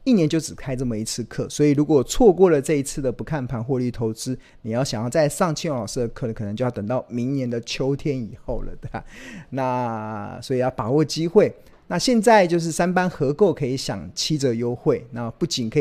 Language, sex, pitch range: Chinese, male, 115-155 Hz